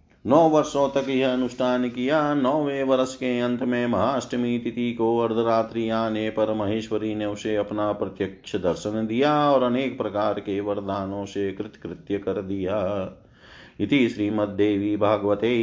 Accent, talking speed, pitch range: native, 140 wpm, 100-115 Hz